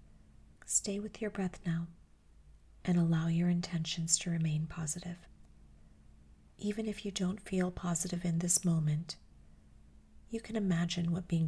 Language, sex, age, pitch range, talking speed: English, female, 40-59, 150-180 Hz, 135 wpm